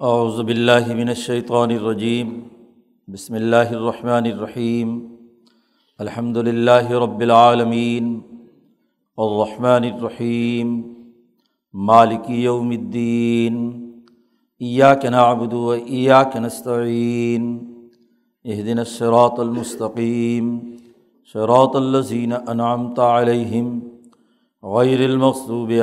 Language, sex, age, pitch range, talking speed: Urdu, male, 50-69, 115-125 Hz, 65 wpm